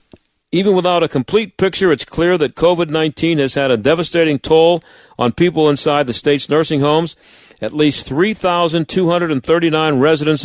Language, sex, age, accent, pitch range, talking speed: English, male, 50-69, American, 130-165 Hz, 145 wpm